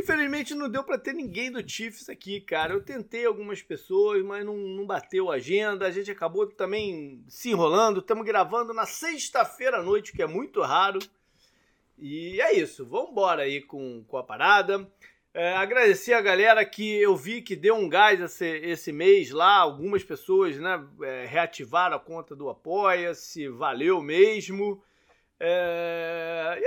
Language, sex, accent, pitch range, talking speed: Portuguese, male, Brazilian, 170-255 Hz, 165 wpm